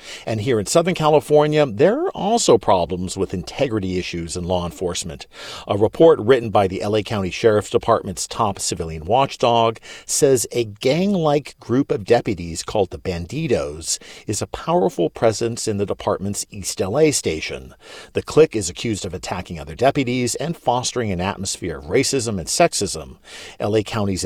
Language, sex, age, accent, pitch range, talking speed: English, male, 50-69, American, 95-135 Hz, 160 wpm